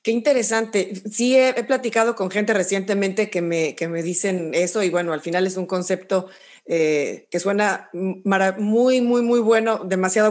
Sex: female